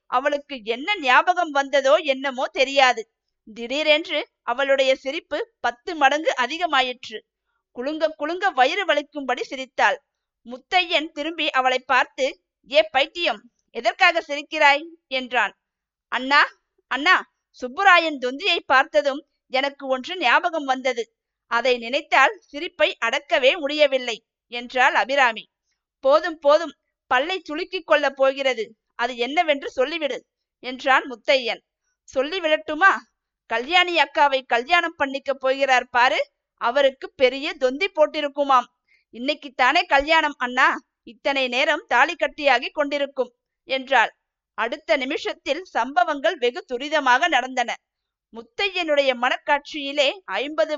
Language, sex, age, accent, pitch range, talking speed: Tamil, female, 50-69, native, 260-320 Hz, 95 wpm